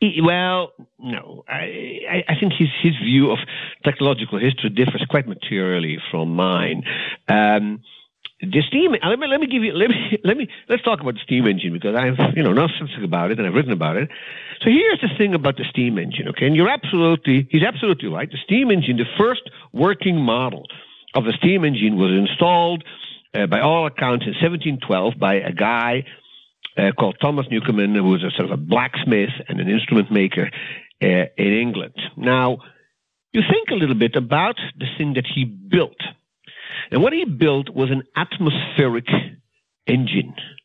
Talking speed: 185 wpm